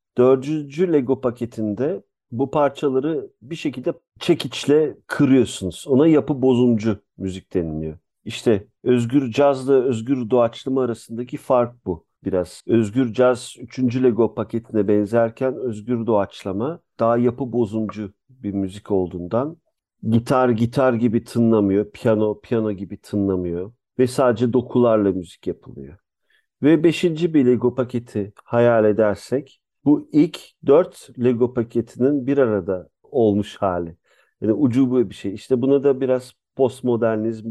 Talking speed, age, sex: 120 wpm, 50-69, male